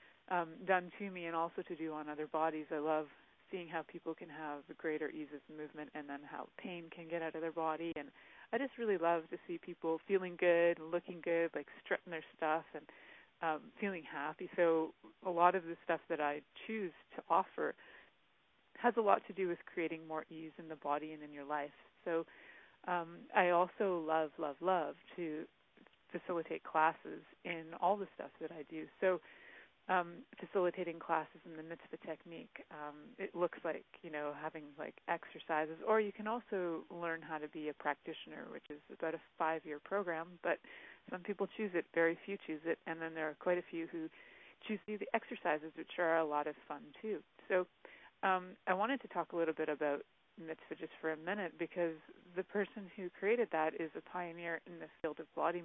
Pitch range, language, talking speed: 155-180 Hz, English, 205 wpm